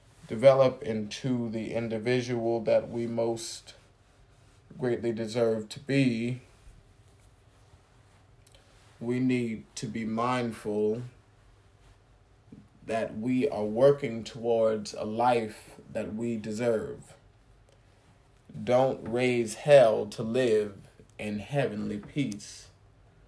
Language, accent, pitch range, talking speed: English, American, 105-120 Hz, 90 wpm